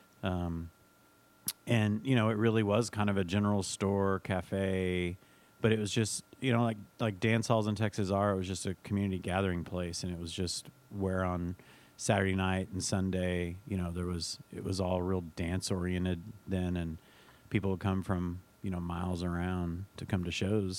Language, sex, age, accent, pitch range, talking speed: English, male, 30-49, American, 95-110 Hz, 195 wpm